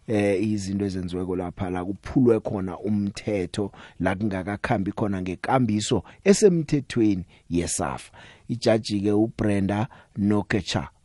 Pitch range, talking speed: 95-140 Hz, 115 wpm